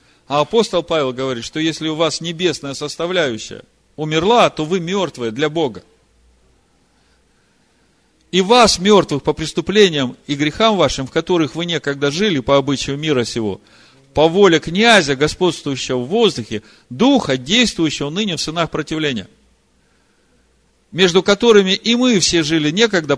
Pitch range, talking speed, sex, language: 145-200 Hz, 135 wpm, male, Russian